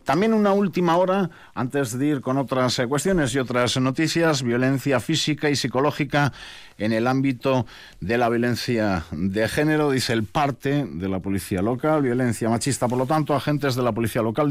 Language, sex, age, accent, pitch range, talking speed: Spanish, male, 50-69, Spanish, 105-140 Hz, 175 wpm